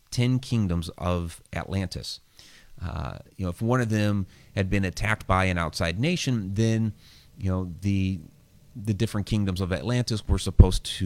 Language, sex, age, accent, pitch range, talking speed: English, male, 30-49, American, 85-105 Hz, 165 wpm